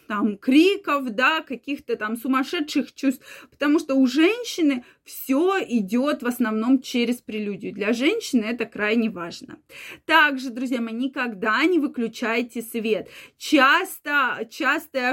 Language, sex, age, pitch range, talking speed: Russian, female, 20-39, 230-290 Hz, 125 wpm